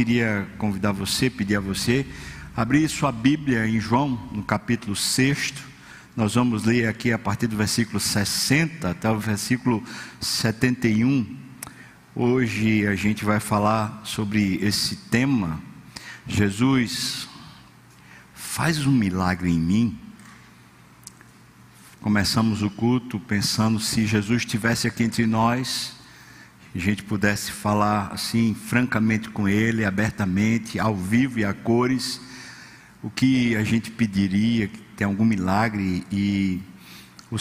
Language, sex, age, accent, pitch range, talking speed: Portuguese, male, 50-69, Brazilian, 100-120 Hz, 120 wpm